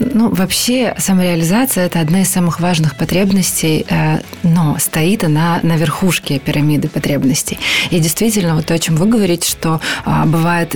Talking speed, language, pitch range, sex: 160 wpm, Ukrainian, 155-180 Hz, female